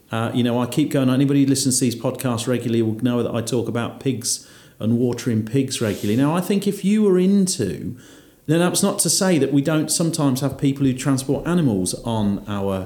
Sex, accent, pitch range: male, British, 115-145 Hz